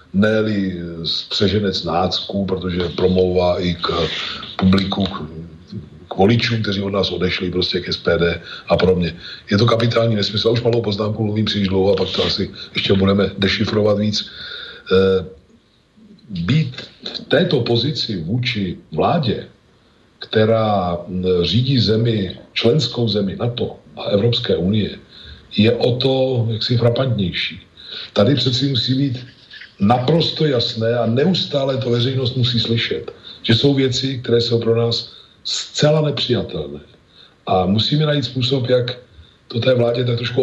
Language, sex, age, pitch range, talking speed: Slovak, male, 50-69, 100-125 Hz, 135 wpm